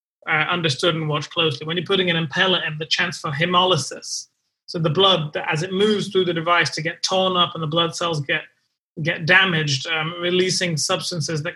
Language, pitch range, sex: English, 160-185 Hz, male